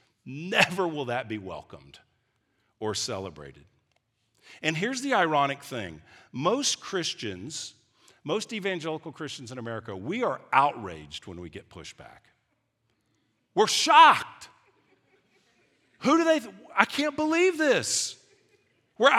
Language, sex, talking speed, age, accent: English, male, 115 wpm, 50-69, American